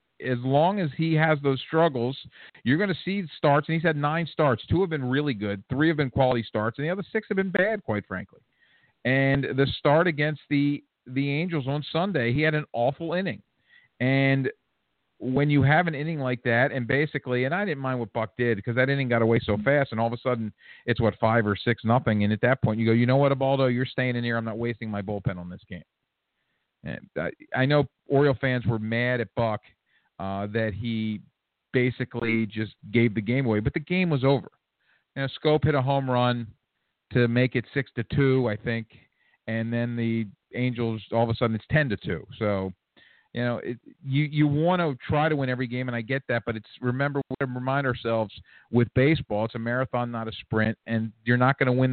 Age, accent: 50-69, American